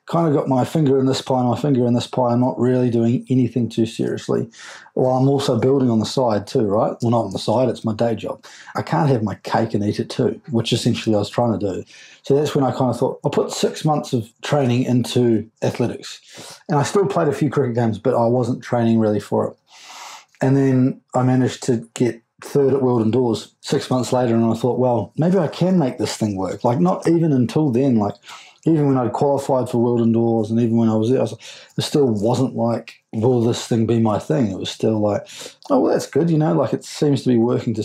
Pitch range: 115-130 Hz